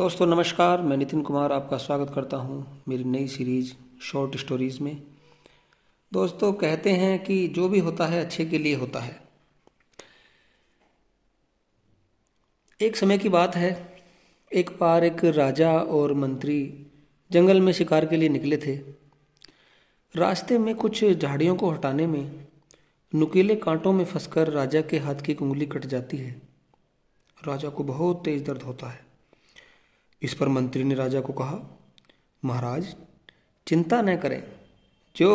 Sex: male